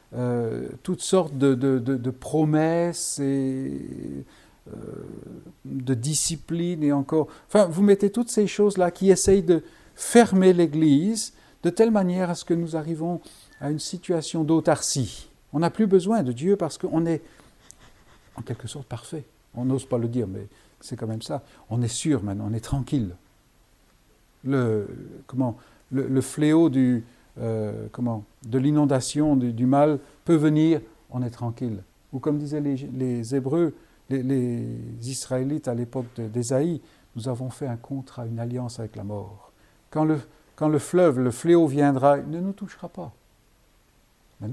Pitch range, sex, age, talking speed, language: 125-170 Hz, male, 50-69, 165 wpm, French